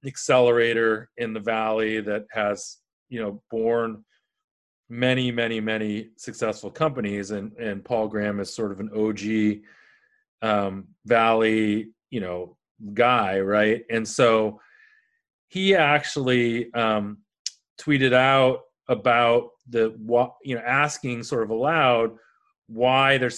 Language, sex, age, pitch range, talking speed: English, male, 30-49, 110-130 Hz, 120 wpm